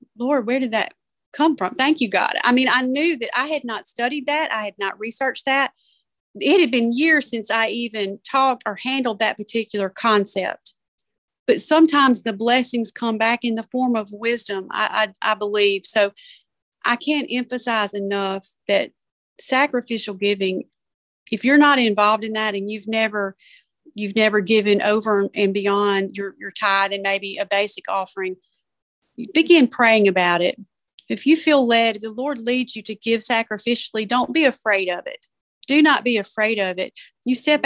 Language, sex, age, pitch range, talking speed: English, female, 40-59, 200-250 Hz, 180 wpm